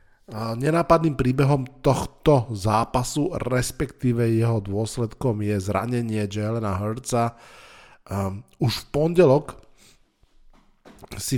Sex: male